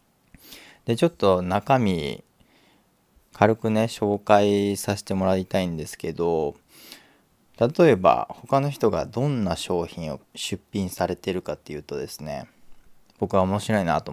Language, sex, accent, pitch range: Japanese, male, native, 95-125 Hz